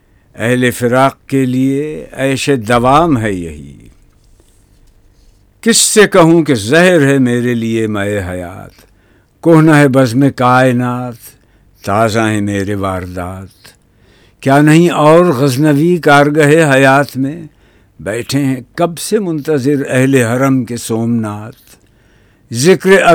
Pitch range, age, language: 105-140 Hz, 60-79, Urdu